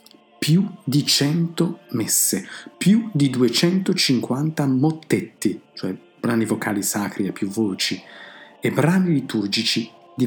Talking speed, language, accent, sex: 110 wpm, Italian, native, male